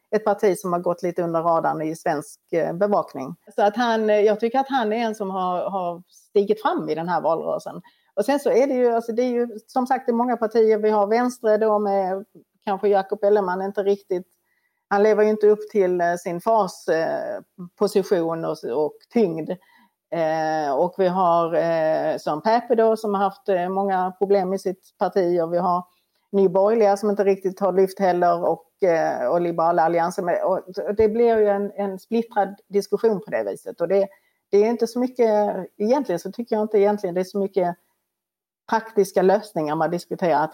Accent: native